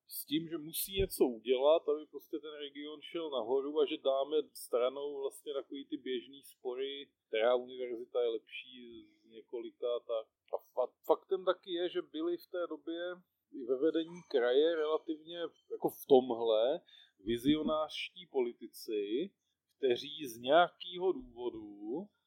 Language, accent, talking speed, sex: Czech, native, 135 wpm, male